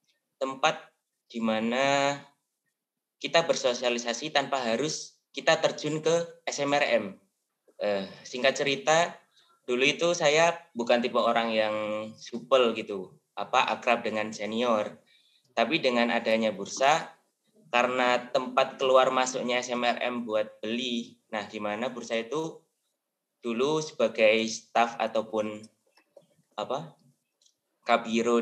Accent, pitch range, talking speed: native, 110-145 Hz, 100 wpm